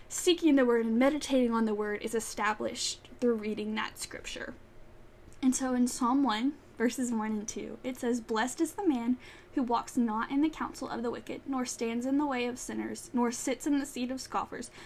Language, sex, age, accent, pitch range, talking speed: English, female, 10-29, American, 230-280 Hz, 210 wpm